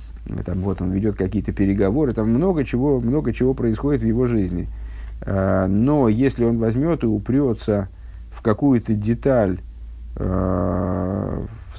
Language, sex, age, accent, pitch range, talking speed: Russian, male, 50-69, native, 95-120 Hz, 125 wpm